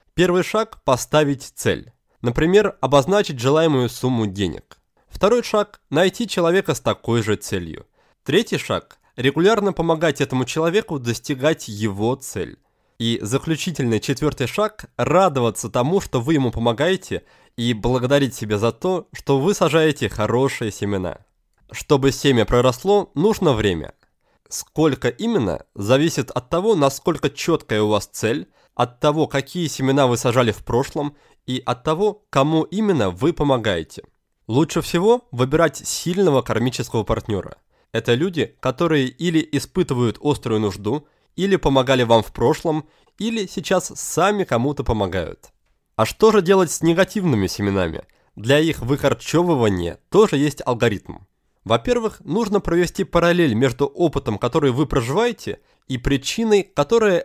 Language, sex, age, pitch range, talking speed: Russian, male, 20-39, 120-170 Hz, 130 wpm